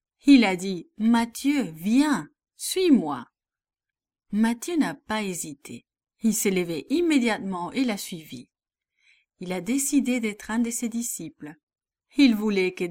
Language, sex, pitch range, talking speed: English, female, 180-255 Hz, 130 wpm